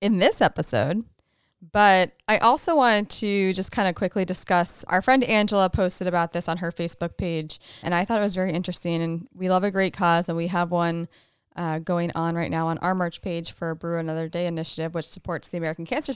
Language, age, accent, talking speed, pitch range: English, 20-39, American, 220 wpm, 165-200 Hz